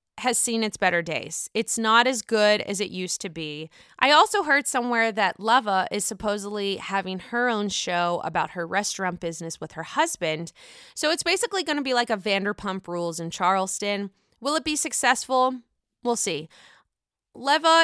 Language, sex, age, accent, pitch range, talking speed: English, female, 20-39, American, 175-245 Hz, 175 wpm